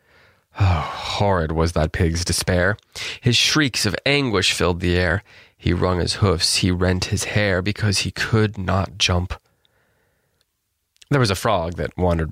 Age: 30-49